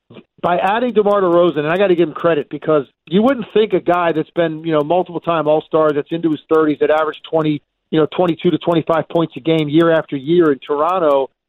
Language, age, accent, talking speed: English, 50-69, American, 245 wpm